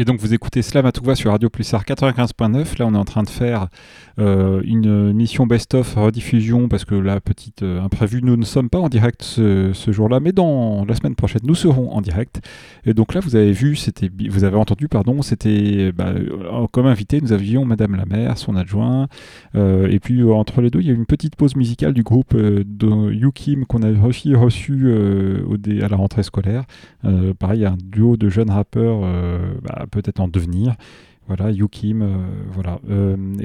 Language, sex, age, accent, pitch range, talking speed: French, male, 30-49, French, 100-120 Hz, 215 wpm